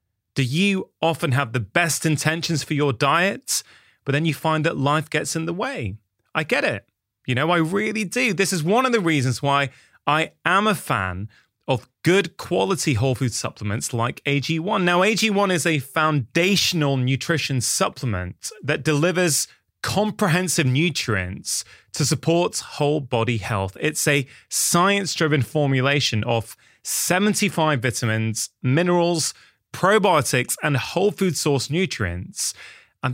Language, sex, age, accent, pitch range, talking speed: English, male, 20-39, British, 120-170 Hz, 140 wpm